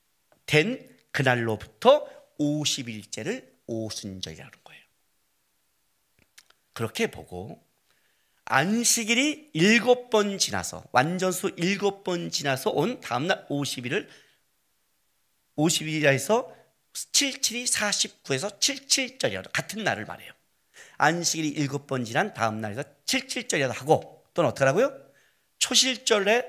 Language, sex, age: Korean, male, 40-59